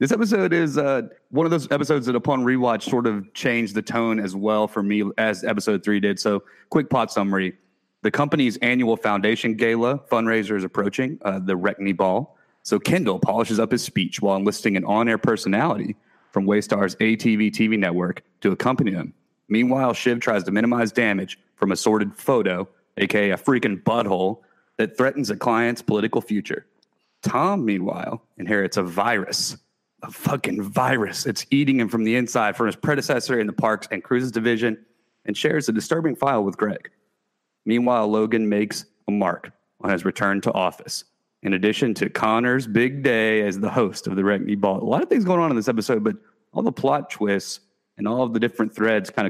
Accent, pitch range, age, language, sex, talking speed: American, 100-120 Hz, 30-49, English, male, 185 wpm